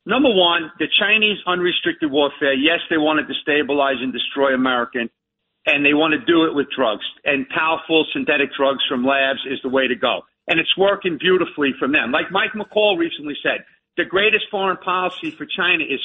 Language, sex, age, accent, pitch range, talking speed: English, male, 50-69, American, 160-210 Hz, 190 wpm